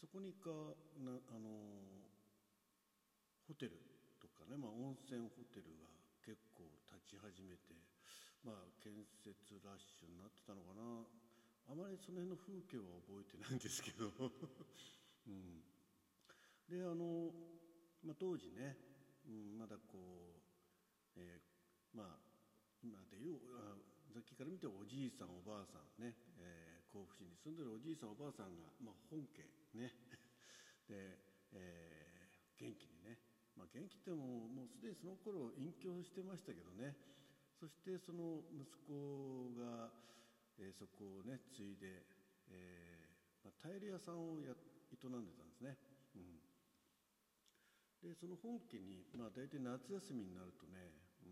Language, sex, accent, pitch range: Japanese, male, native, 95-150 Hz